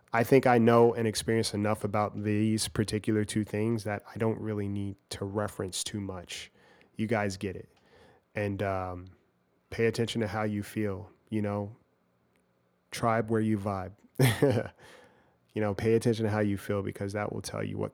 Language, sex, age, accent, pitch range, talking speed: English, male, 30-49, American, 95-110 Hz, 175 wpm